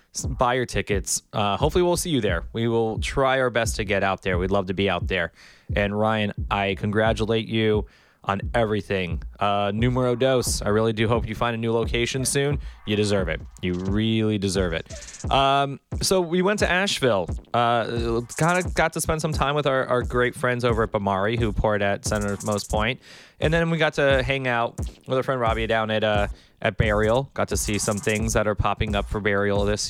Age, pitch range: 20-39, 100-130 Hz